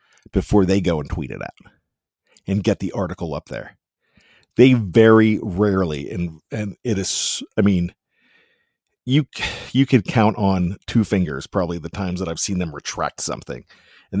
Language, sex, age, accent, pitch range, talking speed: English, male, 50-69, American, 95-130 Hz, 165 wpm